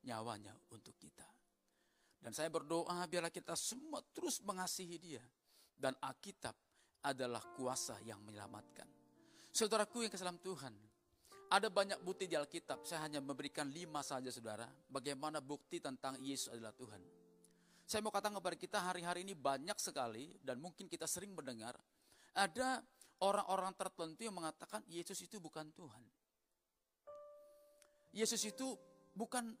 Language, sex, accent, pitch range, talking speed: Indonesian, male, native, 150-215 Hz, 130 wpm